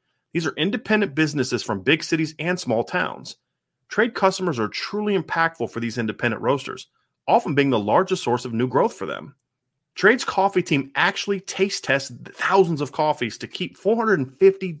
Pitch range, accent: 125-185 Hz, American